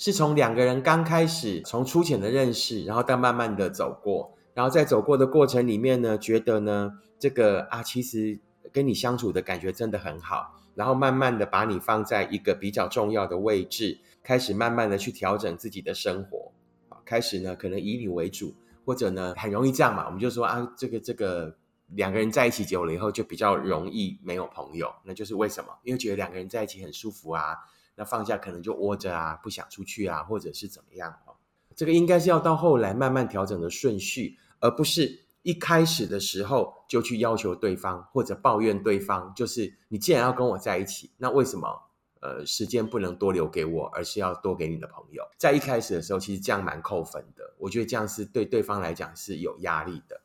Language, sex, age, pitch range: Chinese, male, 20-39, 100-125 Hz